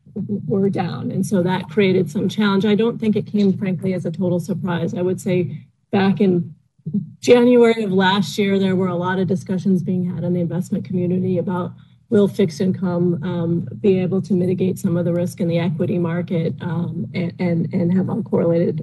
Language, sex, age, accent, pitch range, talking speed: English, female, 30-49, American, 175-200 Hz, 200 wpm